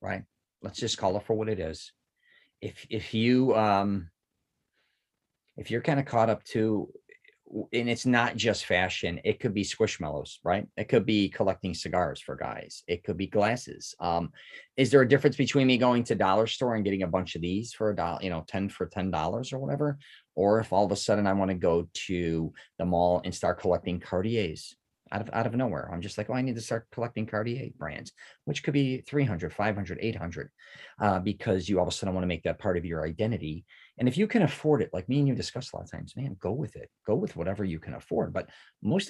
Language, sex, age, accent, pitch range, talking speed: English, male, 40-59, American, 95-120 Hz, 230 wpm